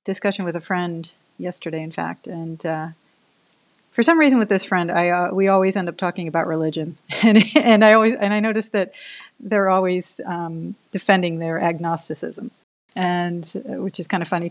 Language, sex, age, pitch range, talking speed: English, female, 40-59, 170-205 Hz, 180 wpm